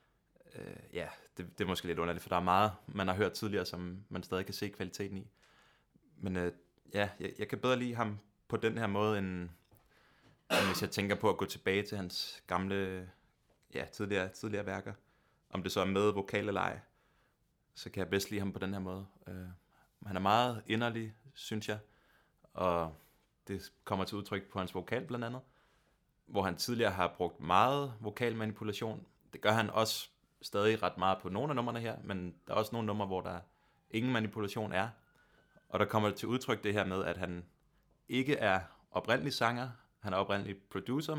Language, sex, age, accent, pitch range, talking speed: Danish, male, 20-39, native, 95-110 Hz, 195 wpm